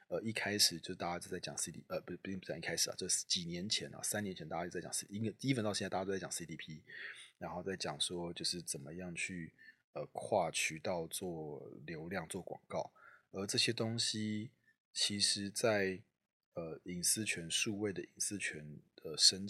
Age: 30-49